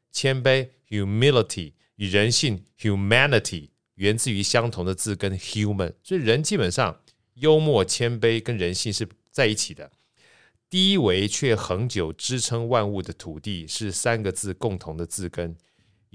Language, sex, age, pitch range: Chinese, male, 30-49, 90-120 Hz